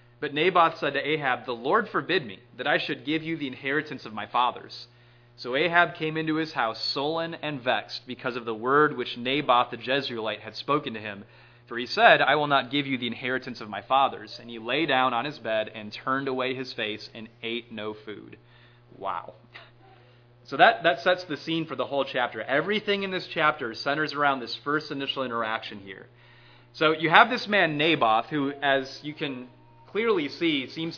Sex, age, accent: male, 30-49, American